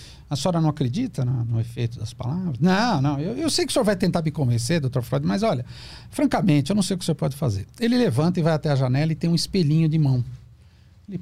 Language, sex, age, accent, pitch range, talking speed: Portuguese, male, 60-79, Brazilian, 115-160 Hz, 255 wpm